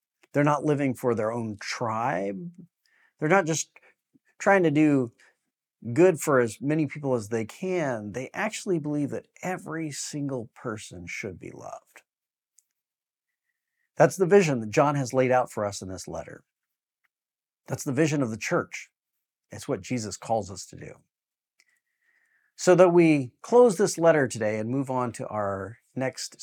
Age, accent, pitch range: 50-69, American, 115-175 Hz